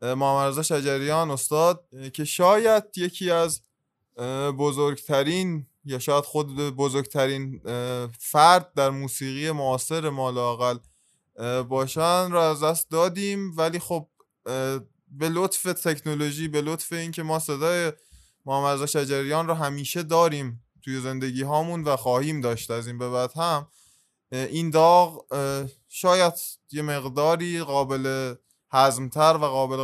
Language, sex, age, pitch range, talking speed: Persian, male, 20-39, 130-160 Hz, 120 wpm